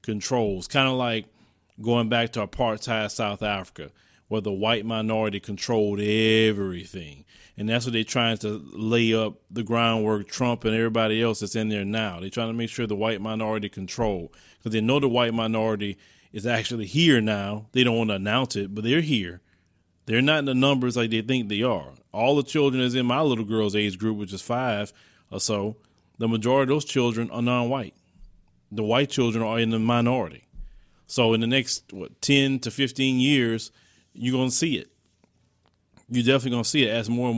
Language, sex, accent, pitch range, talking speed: English, male, American, 110-125 Hz, 195 wpm